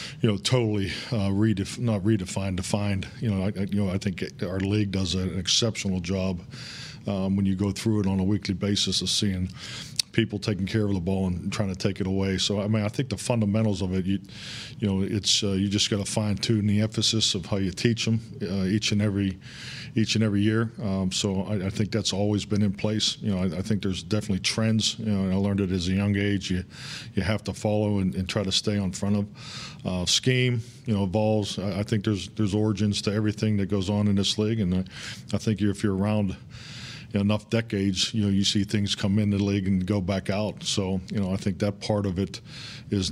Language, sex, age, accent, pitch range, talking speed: English, male, 40-59, American, 95-110 Hz, 235 wpm